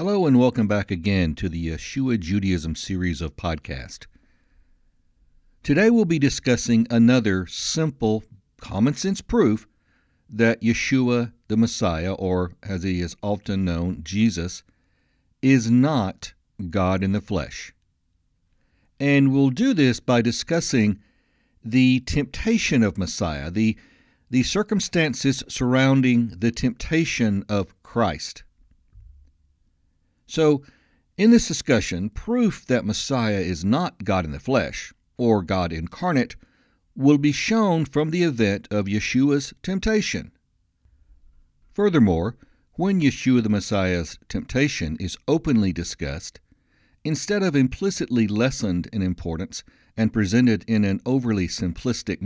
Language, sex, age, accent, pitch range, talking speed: English, male, 60-79, American, 90-135 Hz, 115 wpm